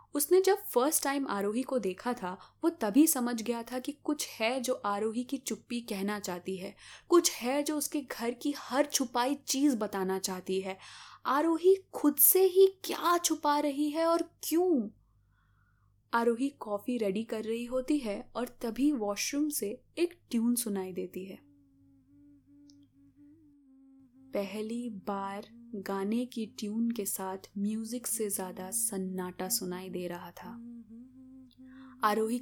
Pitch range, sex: 200-265 Hz, female